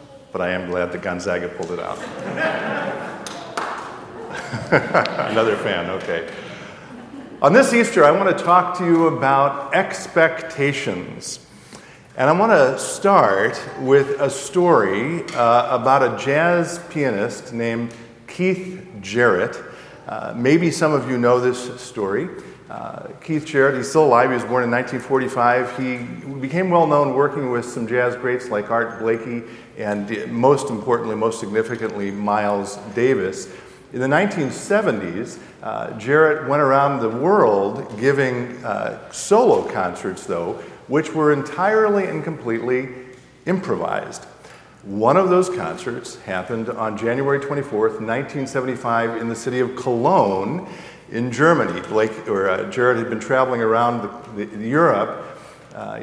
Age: 50-69